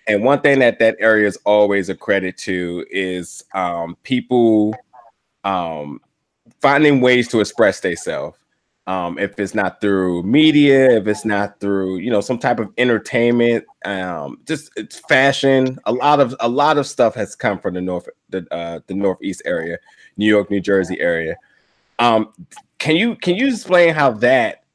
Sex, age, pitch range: male, 20-39, 100-125 Hz